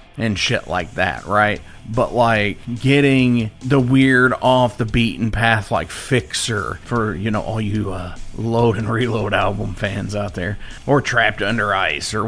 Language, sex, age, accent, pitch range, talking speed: English, male, 30-49, American, 105-130 Hz, 165 wpm